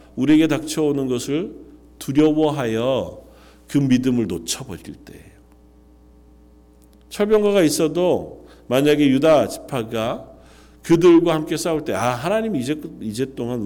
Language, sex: Korean, male